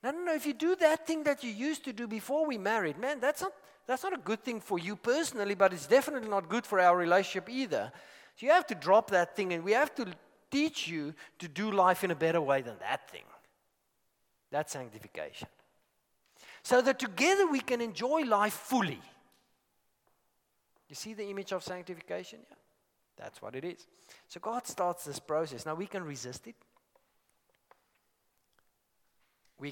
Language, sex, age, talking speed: English, male, 50-69, 185 wpm